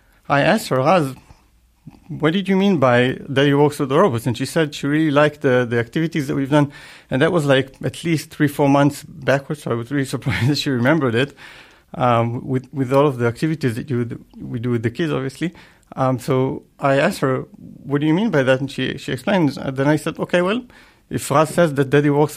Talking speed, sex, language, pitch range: 235 wpm, male, English, 130-150 Hz